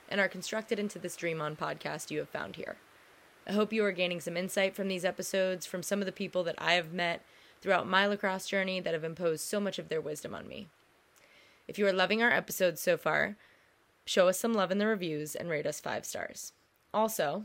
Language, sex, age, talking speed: English, female, 20-39, 225 wpm